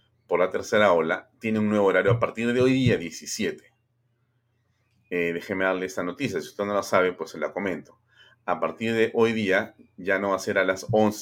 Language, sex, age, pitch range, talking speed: Spanish, male, 40-59, 90-115 Hz, 220 wpm